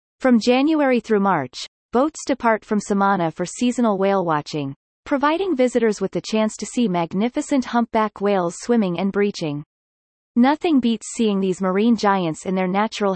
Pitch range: 185-245 Hz